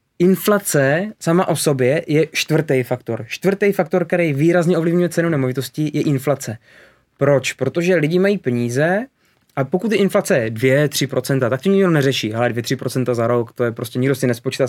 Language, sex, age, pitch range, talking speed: Czech, male, 20-39, 130-165 Hz, 165 wpm